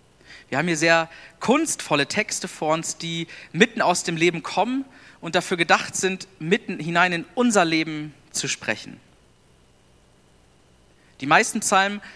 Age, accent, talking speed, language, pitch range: 40-59, German, 140 wpm, German, 145-180 Hz